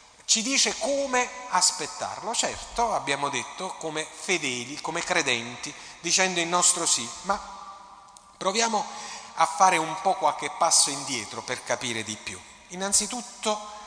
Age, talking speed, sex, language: 40-59, 125 wpm, male, Italian